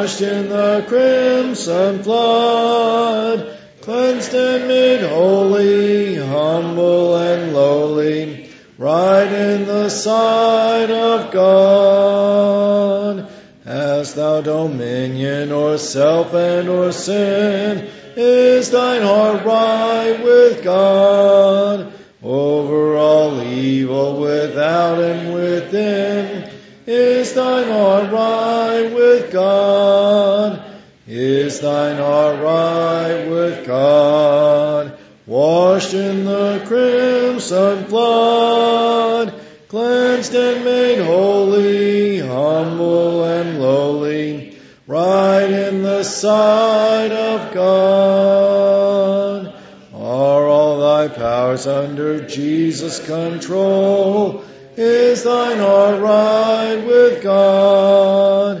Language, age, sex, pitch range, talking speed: English, 40-59, male, 160-220 Hz, 80 wpm